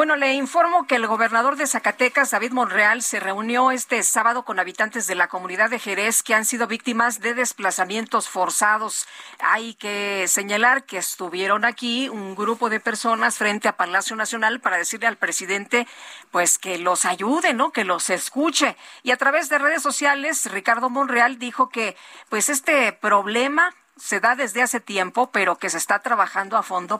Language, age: Spanish, 40-59